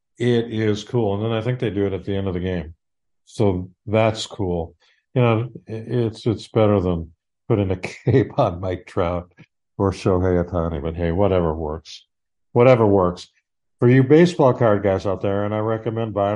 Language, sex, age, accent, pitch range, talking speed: English, male, 50-69, American, 90-115 Hz, 185 wpm